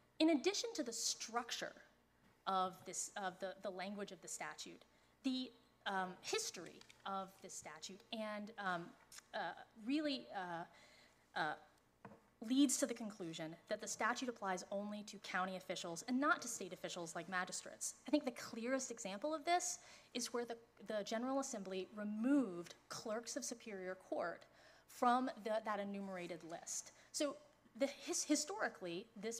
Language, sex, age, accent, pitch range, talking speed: English, female, 30-49, American, 185-260 Hz, 145 wpm